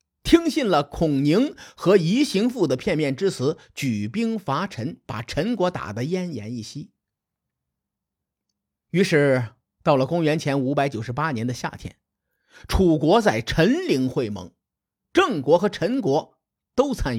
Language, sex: Chinese, male